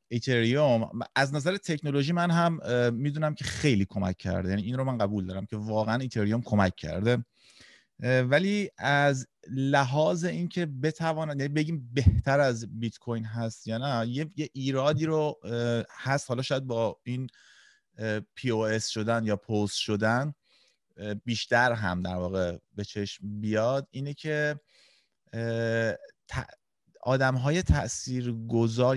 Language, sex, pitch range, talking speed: Persian, male, 105-140 Hz, 130 wpm